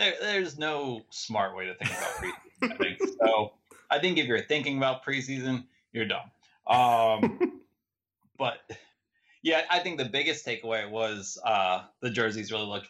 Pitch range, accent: 100-125 Hz, American